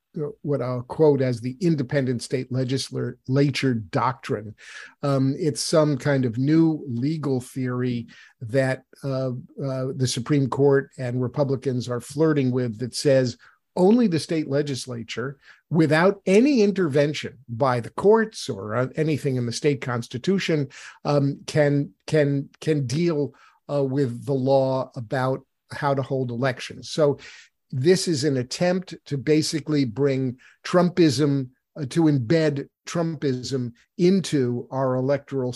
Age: 50-69